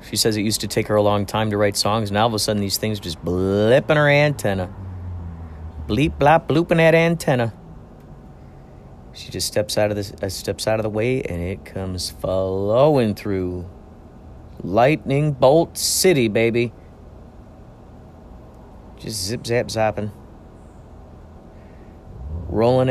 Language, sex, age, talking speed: English, male, 40-59, 150 wpm